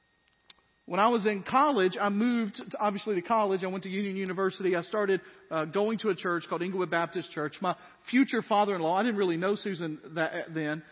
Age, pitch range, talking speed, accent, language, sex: 40-59, 175-220 Hz, 205 wpm, American, English, male